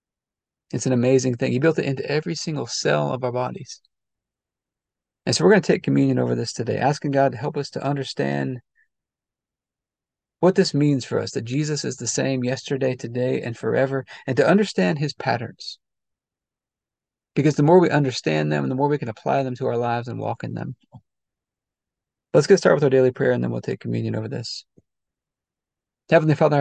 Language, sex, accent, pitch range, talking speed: English, male, American, 120-145 Hz, 190 wpm